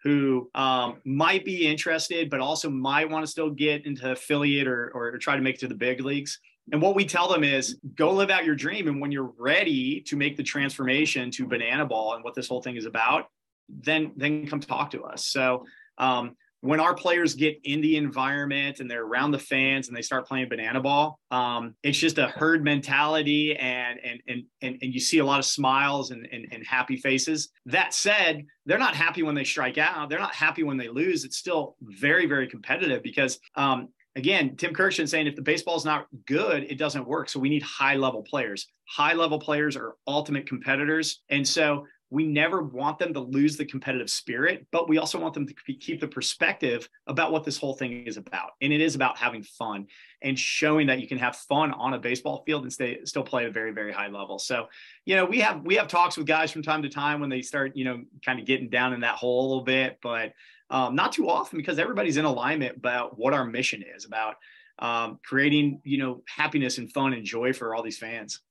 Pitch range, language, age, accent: 130-155 Hz, English, 30-49, American